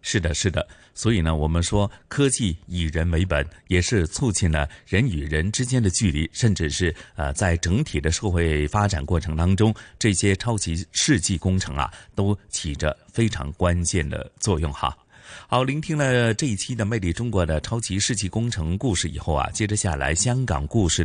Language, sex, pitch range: Chinese, male, 80-110 Hz